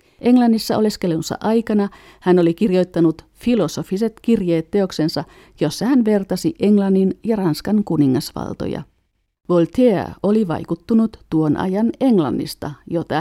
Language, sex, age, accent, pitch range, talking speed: Finnish, female, 50-69, native, 165-215 Hz, 105 wpm